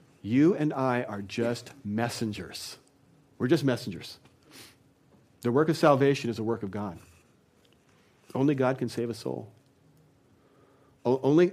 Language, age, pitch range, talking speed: English, 40-59, 110-135 Hz, 130 wpm